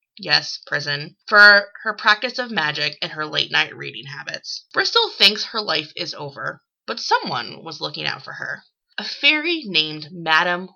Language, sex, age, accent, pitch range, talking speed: English, female, 20-39, American, 160-230 Hz, 160 wpm